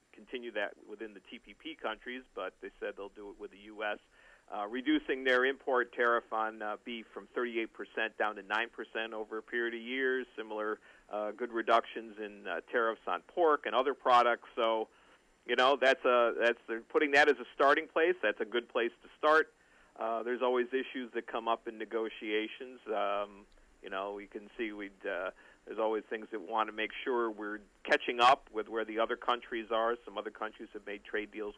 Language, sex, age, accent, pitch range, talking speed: English, male, 50-69, American, 110-125 Hz, 205 wpm